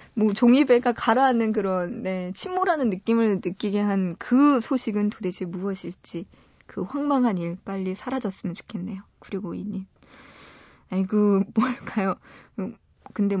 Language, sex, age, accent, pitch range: Korean, female, 20-39, native, 195-265 Hz